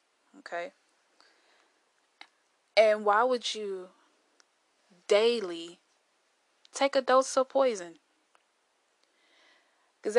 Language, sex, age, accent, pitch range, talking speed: English, female, 10-29, American, 170-245 Hz, 70 wpm